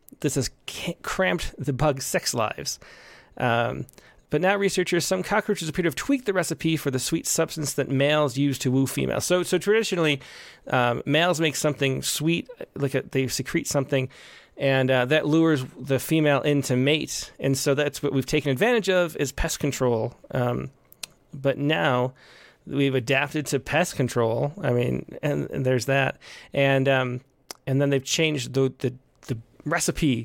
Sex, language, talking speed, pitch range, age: male, English, 165 wpm, 130-165 Hz, 30-49